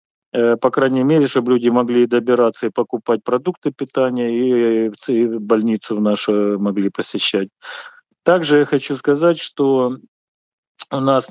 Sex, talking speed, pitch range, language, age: male, 120 wpm, 115-135 Hz, Ukrainian, 40-59